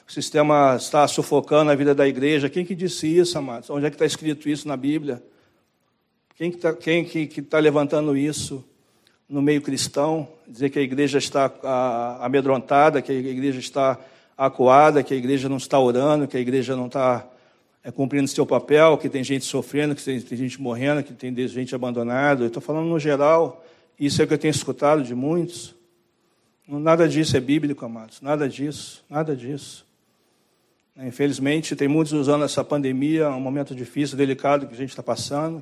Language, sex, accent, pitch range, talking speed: Portuguese, male, Brazilian, 135-150 Hz, 180 wpm